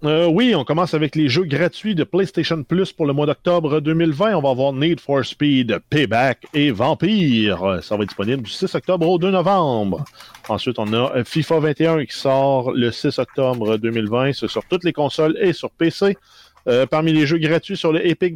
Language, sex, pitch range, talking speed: French, male, 125-170 Hz, 200 wpm